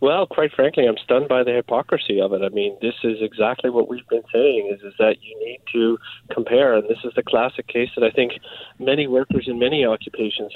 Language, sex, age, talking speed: English, male, 40-59, 225 wpm